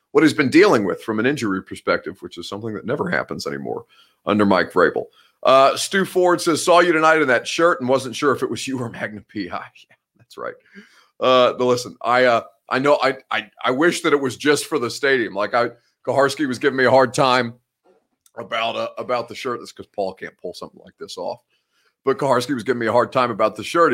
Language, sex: English, male